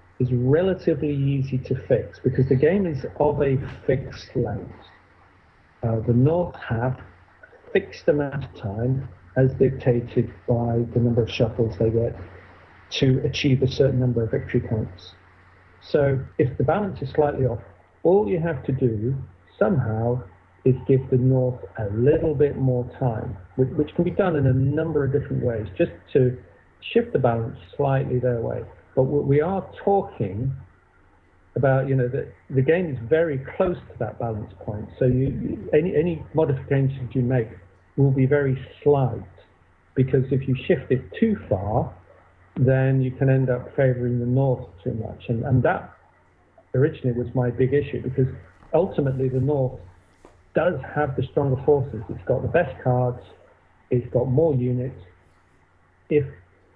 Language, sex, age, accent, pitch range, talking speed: English, male, 50-69, British, 110-140 Hz, 160 wpm